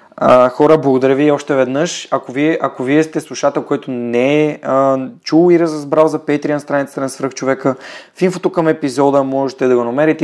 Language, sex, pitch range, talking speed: Bulgarian, male, 125-150 Hz, 190 wpm